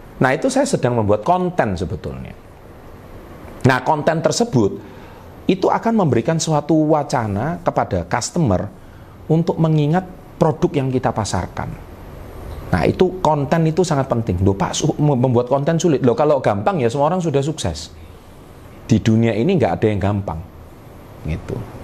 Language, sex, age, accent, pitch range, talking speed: Indonesian, male, 40-59, native, 100-155 Hz, 140 wpm